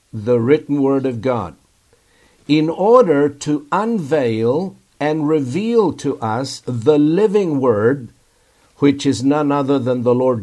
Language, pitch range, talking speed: English, 125-170 Hz, 130 wpm